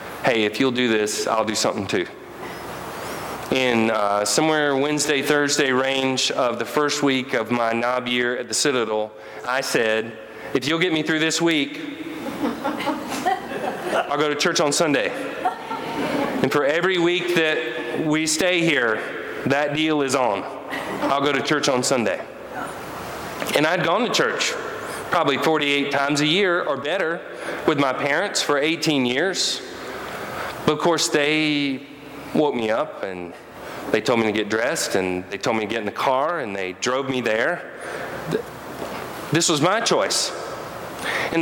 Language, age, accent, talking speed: English, 40-59, American, 160 wpm